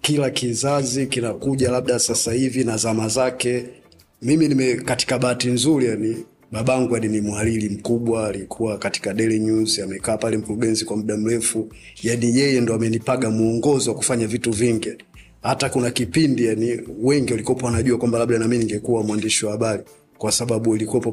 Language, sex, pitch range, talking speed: Swahili, male, 110-125 Hz, 155 wpm